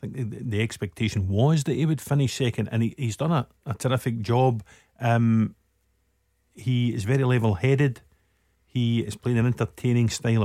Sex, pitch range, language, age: male, 110-130 Hz, English, 50-69